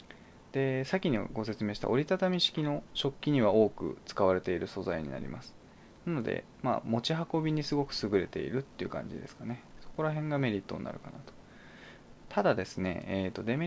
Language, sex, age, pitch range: Japanese, male, 20-39, 105-165 Hz